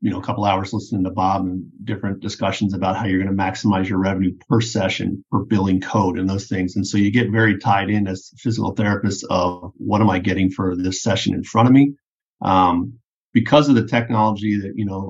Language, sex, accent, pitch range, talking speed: English, male, American, 95-115 Hz, 225 wpm